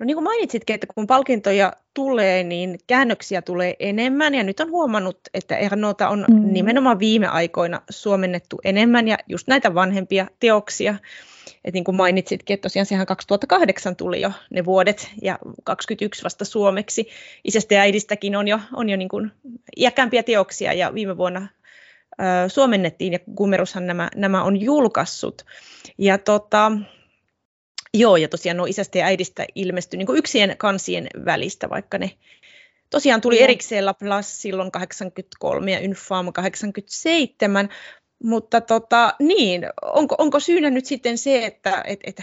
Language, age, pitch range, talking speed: Finnish, 20-39, 195-235 Hz, 145 wpm